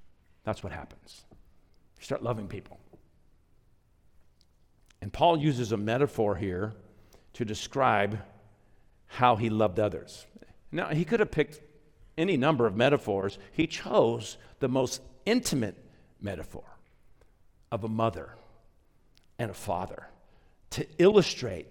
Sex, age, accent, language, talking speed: male, 50-69, American, English, 115 wpm